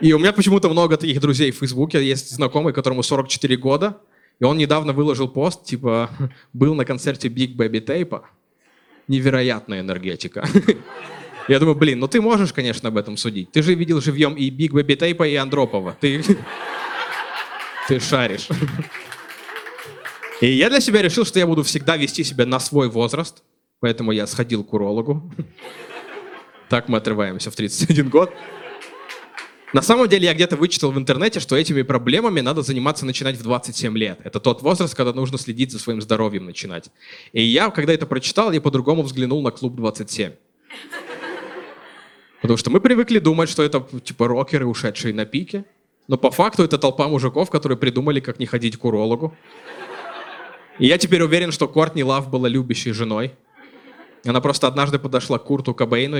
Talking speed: 165 wpm